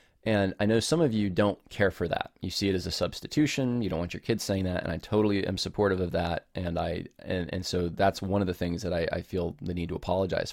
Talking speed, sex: 275 wpm, male